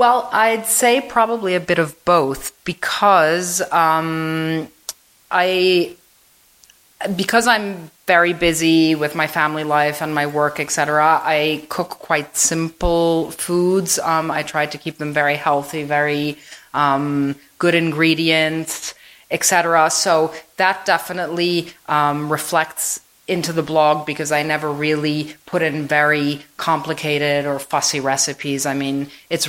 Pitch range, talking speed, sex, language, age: 145-165 Hz, 130 wpm, female, English, 30-49